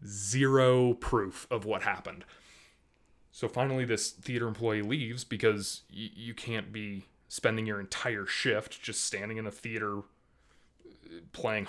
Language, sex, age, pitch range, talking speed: English, male, 20-39, 105-140 Hz, 135 wpm